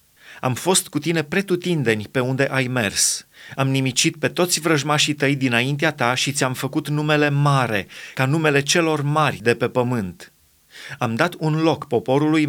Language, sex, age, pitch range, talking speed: Romanian, male, 30-49, 125-155 Hz, 165 wpm